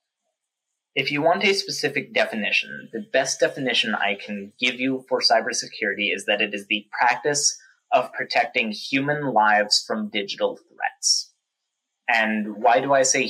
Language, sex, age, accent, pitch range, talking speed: English, male, 20-39, American, 115-155 Hz, 150 wpm